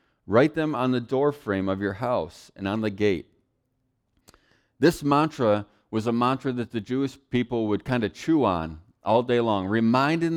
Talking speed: 175 wpm